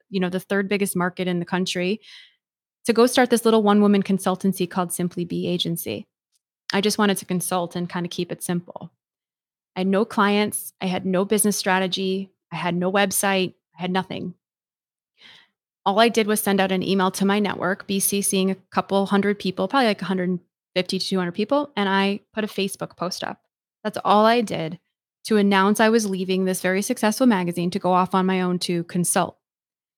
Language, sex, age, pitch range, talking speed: English, female, 20-39, 180-210 Hz, 200 wpm